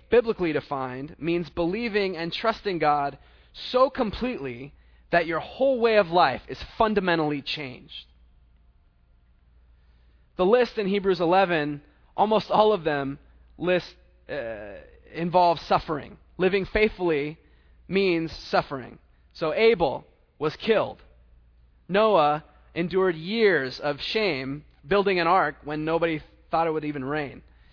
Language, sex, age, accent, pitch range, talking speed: English, male, 20-39, American, 130-200 Hz, 115 wpm